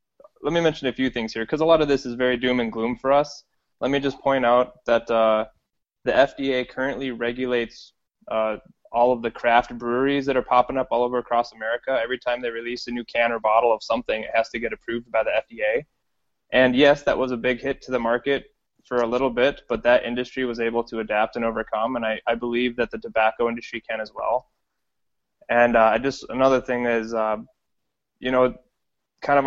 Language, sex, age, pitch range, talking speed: English, male, 20-39, 115-130 Hz, 225 wpm